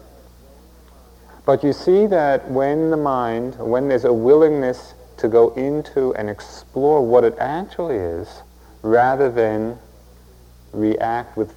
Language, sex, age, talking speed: English, male, 40-59, 125 wpm